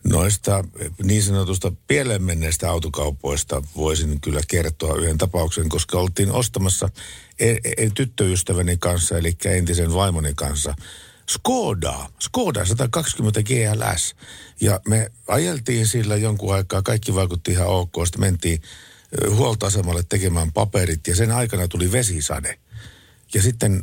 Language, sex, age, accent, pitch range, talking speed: Finnish, male, 60-79, native, 85-105 Hz, 120 wpm